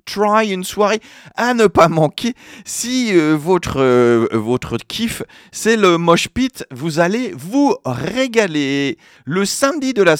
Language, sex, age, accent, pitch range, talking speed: French, male, 40-59, French, 150-225 Hz, 140 wpm